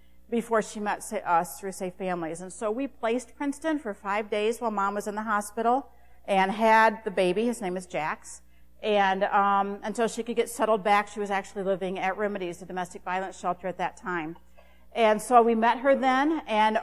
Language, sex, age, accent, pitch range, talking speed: English, female, 50-69, American, 185-235 Hz, 205 wpm